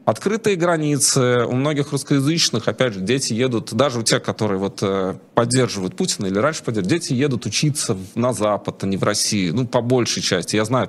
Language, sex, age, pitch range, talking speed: Russian, male, 30-49, 105-145 Hz, 200 wpm